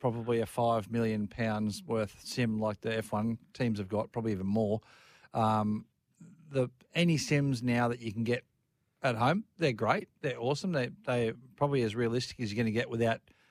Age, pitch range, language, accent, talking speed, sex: 40-59, 115-140 Hz, English, Australian, 185 wpm, male